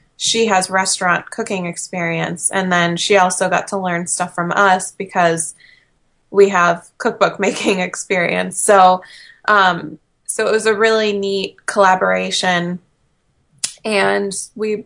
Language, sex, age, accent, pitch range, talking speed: English, female, 20-39, American, 180-205 Hz, 130 wpm